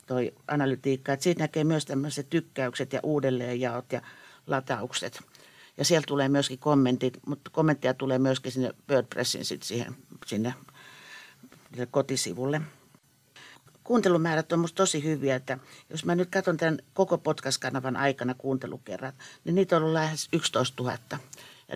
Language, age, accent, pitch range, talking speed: Finnish, 60-79, native, 130-155 Hz, 140 wpm